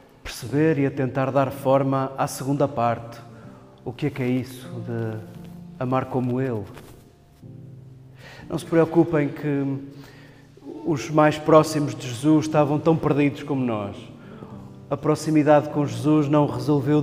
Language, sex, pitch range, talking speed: Portuguese, male, 125-150 Hz, 135 wpm